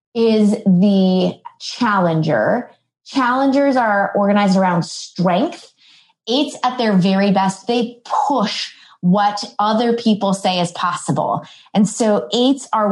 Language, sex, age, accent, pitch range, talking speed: English, female, 20-39, American, 185-235 Hz, 115 wpm